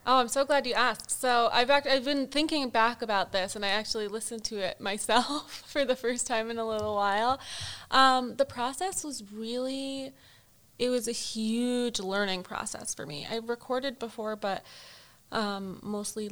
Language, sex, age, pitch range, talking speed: English, female, 20-39, 195-240 Hz, 180 wpm